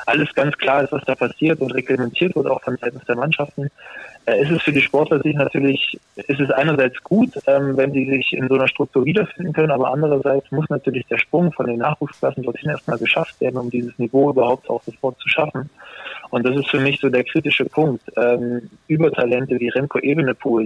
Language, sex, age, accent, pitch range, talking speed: German, male, 20-39, German, 120-140 Hz, 210 wpm